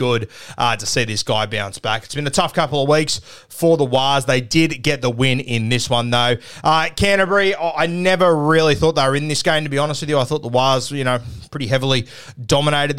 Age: 20-39